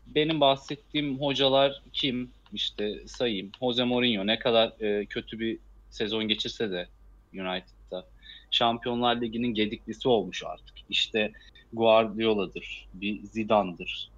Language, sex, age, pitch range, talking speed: Turkish, male, 30-49, 100-125 Hz, 110 wpm